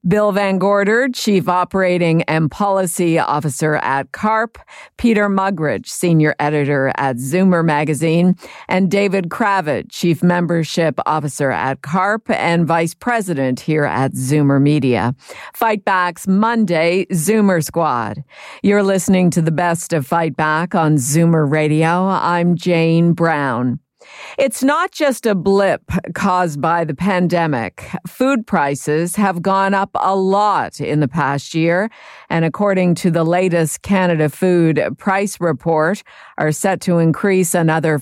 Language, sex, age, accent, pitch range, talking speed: English, female, 50-69, American, 155-195 Hz, 135 wpm